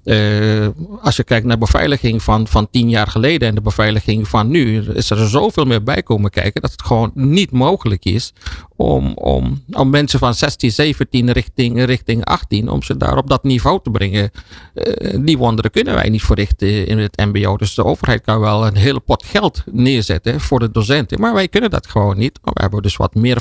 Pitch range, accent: 100-130 Hz, Dutch